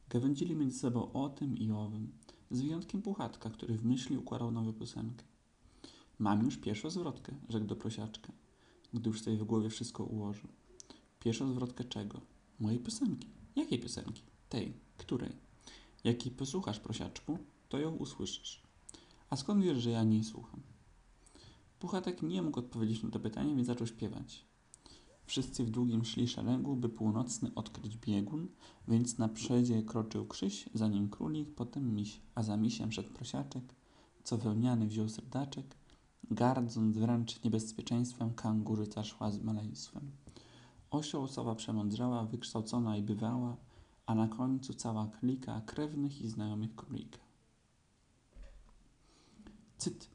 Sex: male